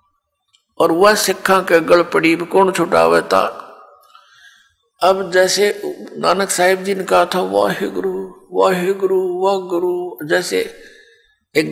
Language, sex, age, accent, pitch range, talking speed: Hindi, male, 60-79, native, 180-200 Hz, 135 wpm